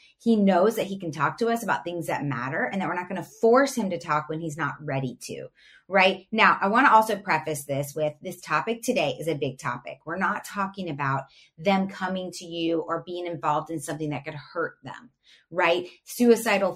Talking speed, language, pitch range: 220 wpm, English, 165-220 Hz